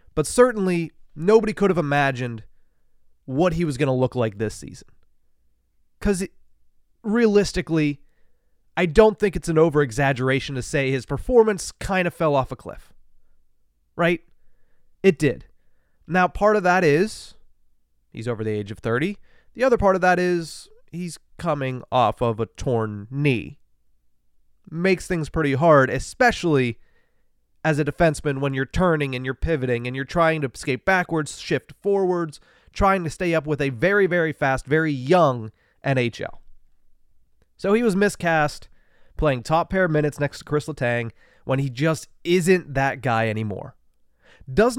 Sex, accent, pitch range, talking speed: male, American, 115-180 Hz, 155 wpm